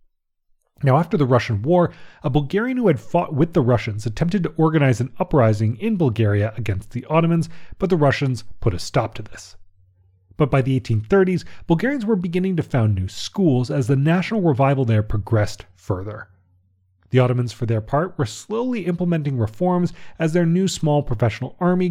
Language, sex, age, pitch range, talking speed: English, male, 30-49, 110-165 Hz, 175 wpm